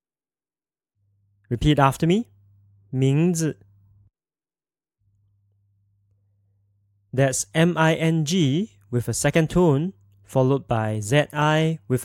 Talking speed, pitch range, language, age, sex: 70 wpm, 100-150 Hz, English, 20-39, male